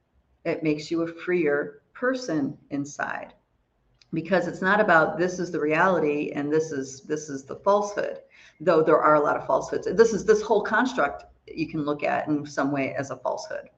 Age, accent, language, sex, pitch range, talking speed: 50-69, American, English, female, 155-255 Hz, 190 wpm